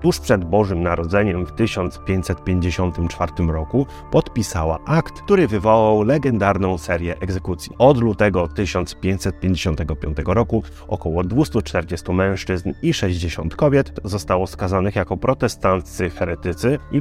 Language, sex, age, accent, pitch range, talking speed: Polish, male, 30-49, native, 90-120 Hz, 105 wpm